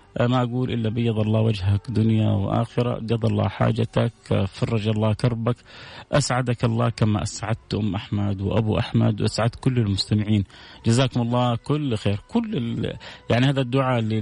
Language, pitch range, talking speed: English, 110-130 Hz, 145 wpm